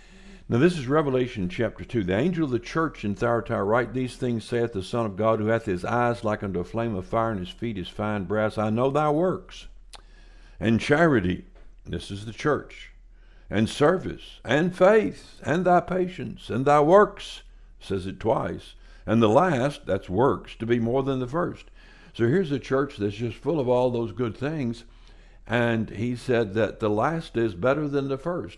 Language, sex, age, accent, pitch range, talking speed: English, male, 60-79, American, 105-140 Hz, 195 wpm